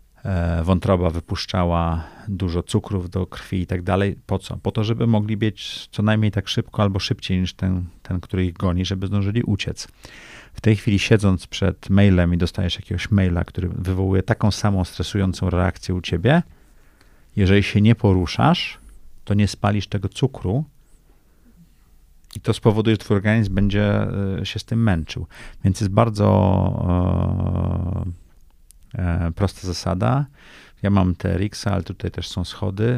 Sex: male